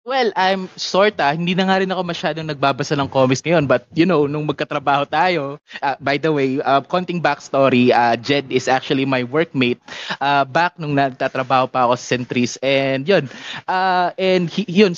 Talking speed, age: 180 wpm, 20-39